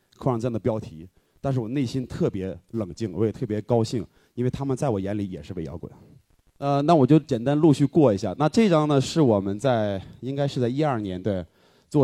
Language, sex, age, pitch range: Chinese, male, 20-39, 105-140 Hz